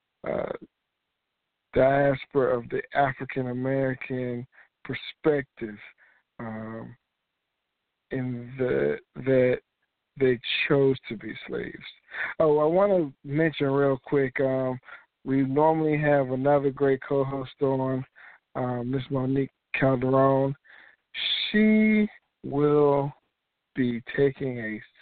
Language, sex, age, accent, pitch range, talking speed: English, male, 50-69, American, 125-140 Hz, 95 wpm